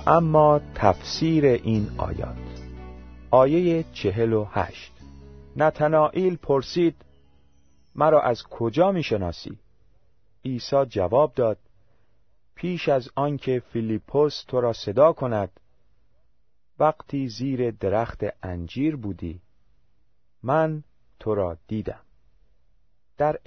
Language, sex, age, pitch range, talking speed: Persian, male, 40-59, 100-145 Hz, 85 wpm